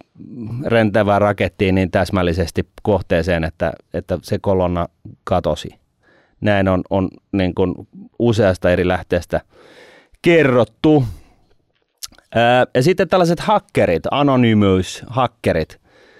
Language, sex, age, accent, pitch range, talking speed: Finnish, male, 30-49, native, 95-110 Hz, 90 wpm